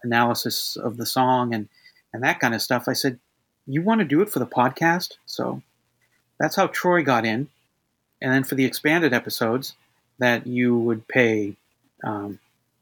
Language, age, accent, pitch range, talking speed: English, 40-59, American, 115-135 Hz, 175 wpm